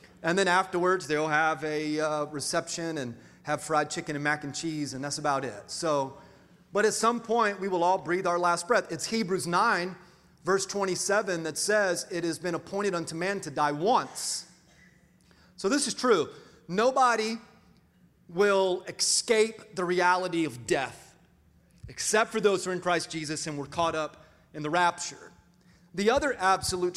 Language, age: English, 30-49